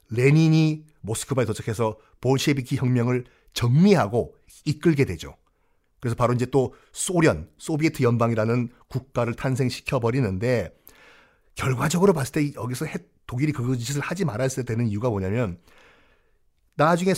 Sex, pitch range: male, 115-160 Hz